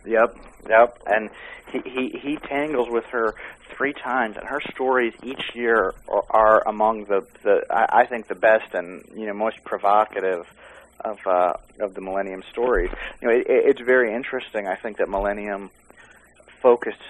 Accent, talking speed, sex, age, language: American, 160 wpm, male, 40-59, English